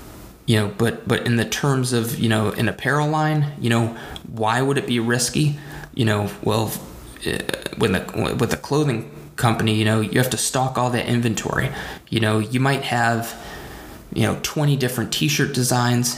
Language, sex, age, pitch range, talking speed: English, male, 20-39, 110-130 Hz, 180 wpm